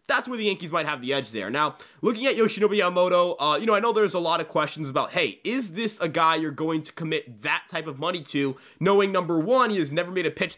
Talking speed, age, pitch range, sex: 270 wpm, 20-39, 150-200 Hz, male